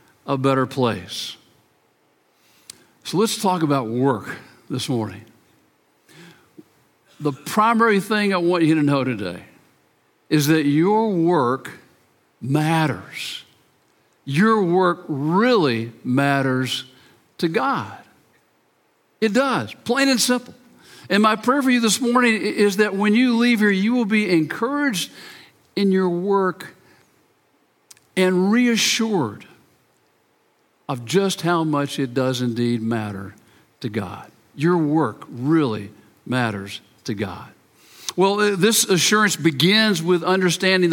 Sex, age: male, 60-79